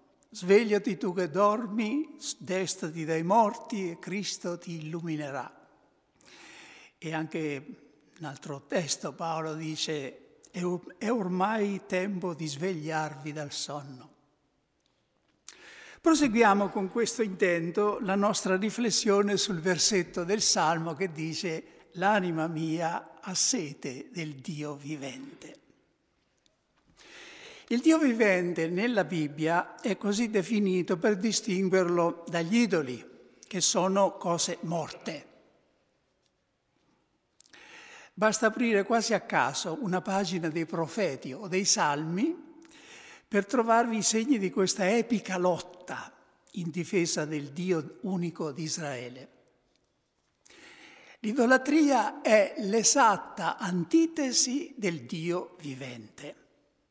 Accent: native